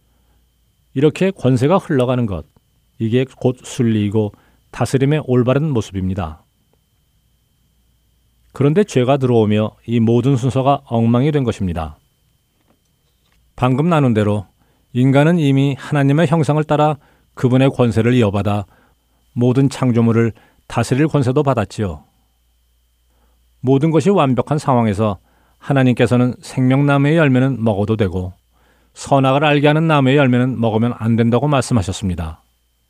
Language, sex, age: Korean, male, 40-59